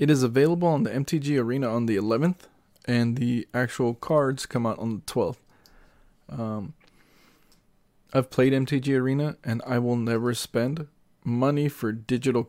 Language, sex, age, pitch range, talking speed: English, male, 20-39, 115-135 Hz, 155 wpm